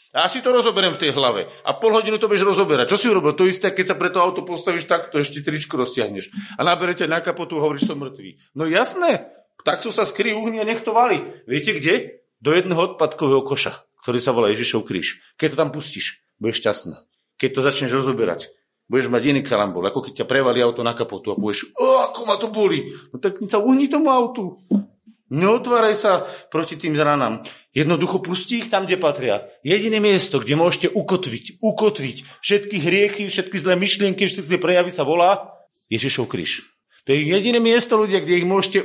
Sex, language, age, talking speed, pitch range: male, Slovak, 40-59, 195 wpm, 145-210 Hz